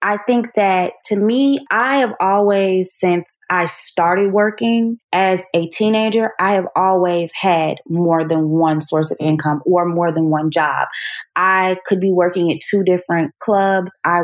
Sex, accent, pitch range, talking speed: female, American, 170-225 Hz, 165 wpm